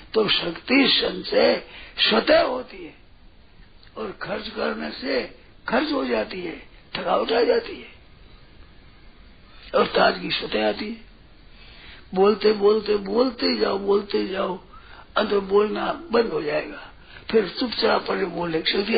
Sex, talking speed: male, 125 wpm